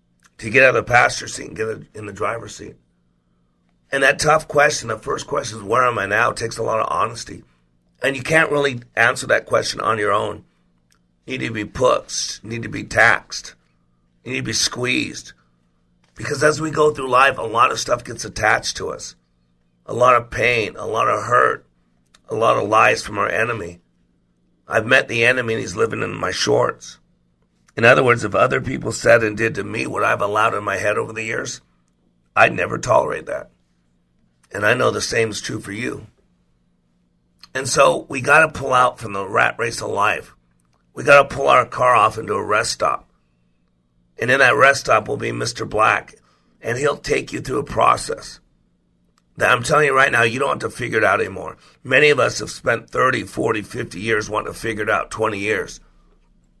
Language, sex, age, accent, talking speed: English, male, 50-69, American, 210 wpm